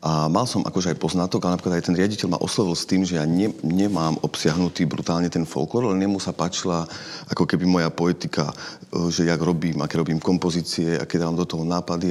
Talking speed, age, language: 210 wpm, 30-49, Slovak